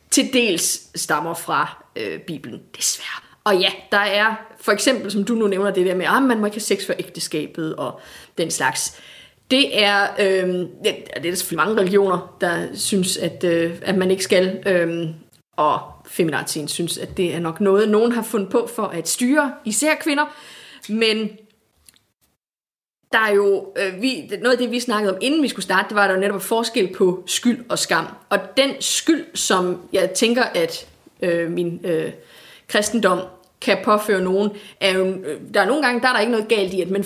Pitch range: 185-245 Hz